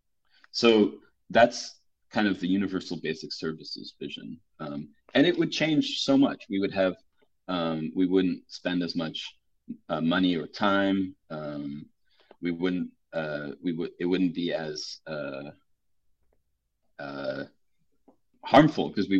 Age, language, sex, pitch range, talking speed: 30-49, English, male, 80-100 Hz, 140 wpm